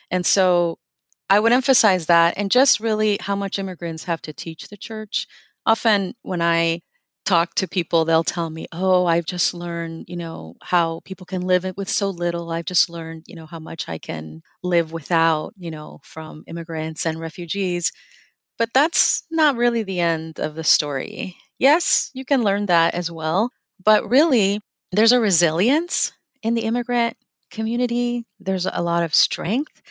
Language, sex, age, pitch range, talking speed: English, female, 30-49, 165-215 Hz, 175 wpm